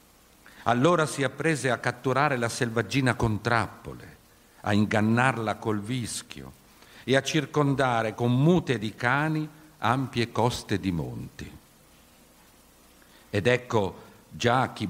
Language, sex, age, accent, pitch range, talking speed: Italian, male, 50-69, native, 100-125 Hz, 115 wpm